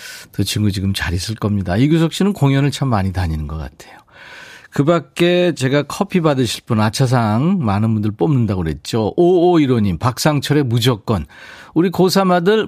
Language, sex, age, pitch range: Korean, male, 40-59, 105-160 Hz